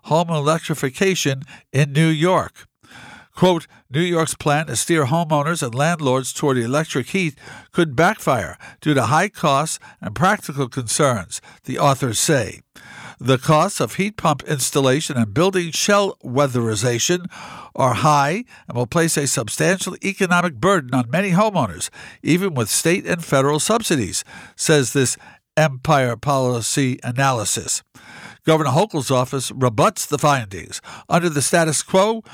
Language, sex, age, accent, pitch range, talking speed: English, male, 50-69, American, 135-170 Hz, 135 wpm